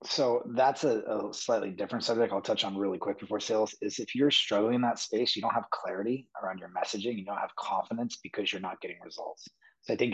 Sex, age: male, 30-49